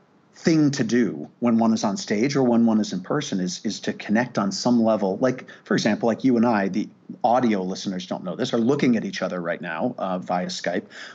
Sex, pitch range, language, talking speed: male, 105-135 Hz, English, 235 wpm